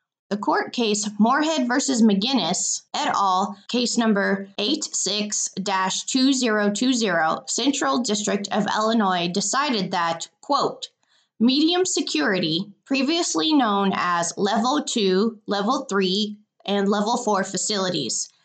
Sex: female